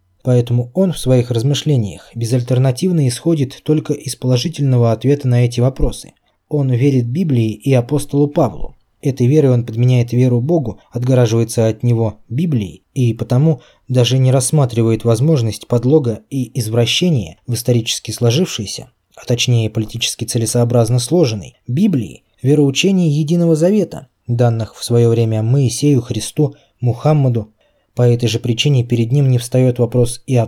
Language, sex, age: Russian, male, 20-39